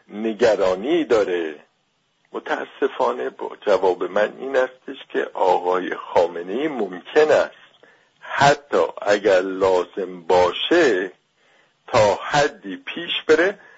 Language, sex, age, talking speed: English, male, 50-69, 95 wpm